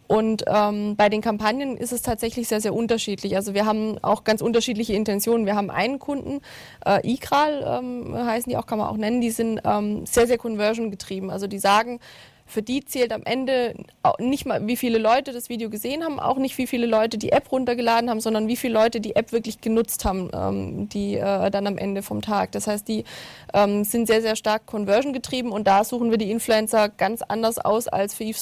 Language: German